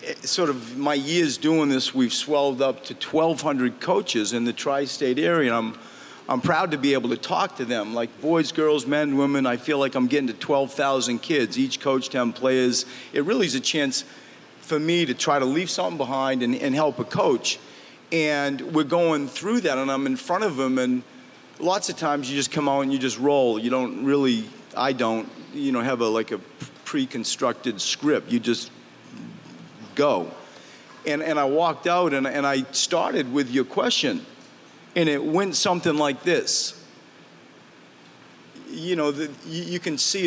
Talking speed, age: 185 wpm, 40-59